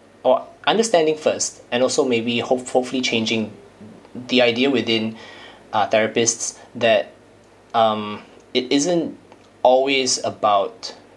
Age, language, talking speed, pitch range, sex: 20-39, English, 95 wpm, 110-125 Hz, male